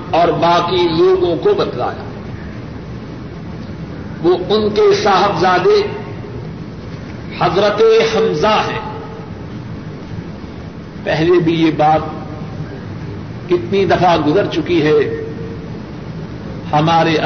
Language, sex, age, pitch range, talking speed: Urdu, male, 60-79, 170-220 Hz, 75 wpm